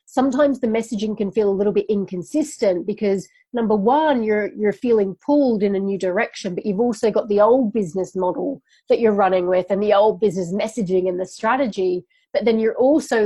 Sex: female